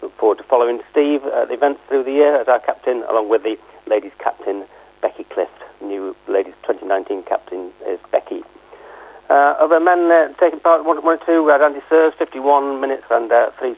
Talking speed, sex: 200 wpm, male